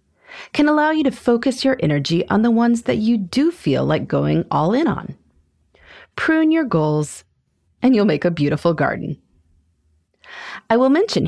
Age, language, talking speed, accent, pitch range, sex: 30-49, English, 165 wpm, American, 150-255 Hz, female